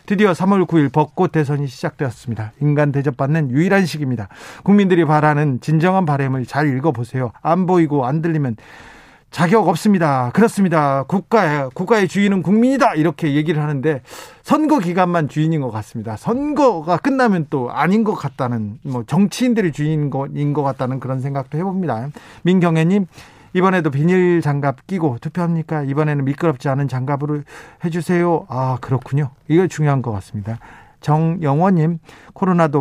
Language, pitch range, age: Korean, 140-175 Hz, 40-59